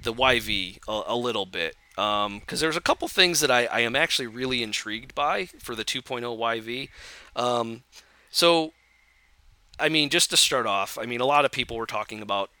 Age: 30-49